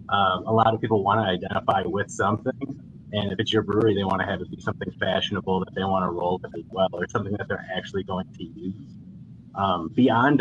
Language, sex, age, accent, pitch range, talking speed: English, male, 30-49, American, 95-110 Hz, 235 wpm